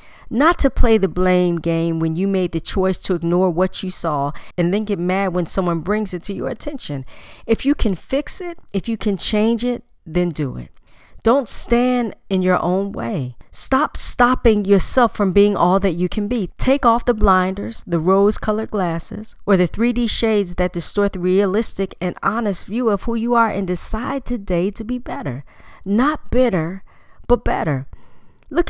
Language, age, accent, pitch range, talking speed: English, 40-59, American, 175-235 Hz, 185 wpm